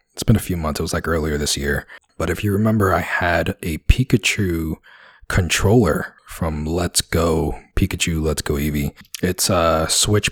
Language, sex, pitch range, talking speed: English, male, 80-105 Hz, 175 wpm